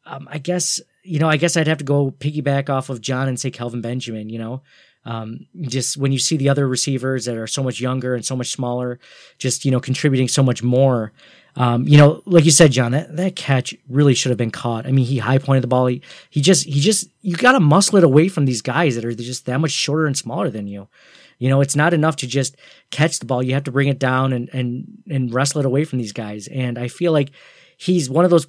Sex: male